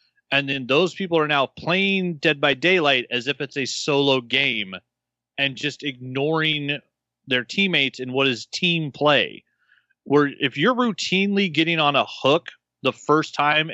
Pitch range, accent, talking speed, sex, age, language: 125-170 Hz, American, 160 wpm, male, 30-49, English